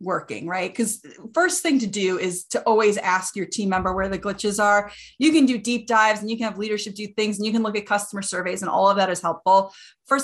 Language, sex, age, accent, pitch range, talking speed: English, female, 30-49, American, 180-225 Hz, 260 wpm